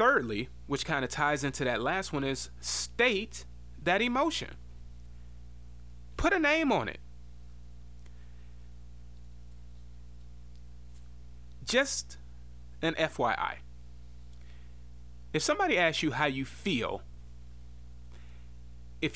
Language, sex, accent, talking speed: English, male, American, 90 wpm